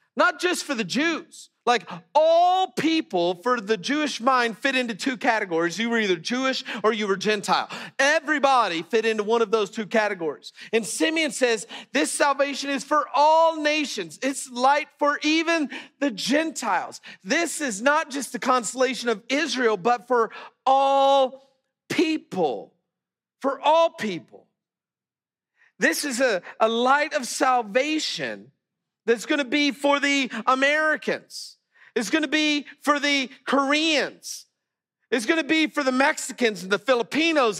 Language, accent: English, American